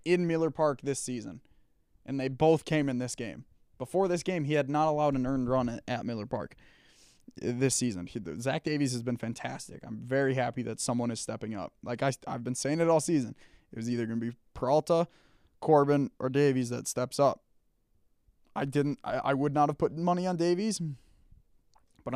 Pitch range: 115-140 Hz